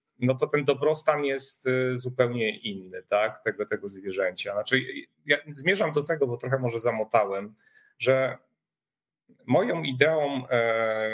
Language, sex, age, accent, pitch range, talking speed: Polish, male, 40-59, native, 115-155 Hz, 125 wpm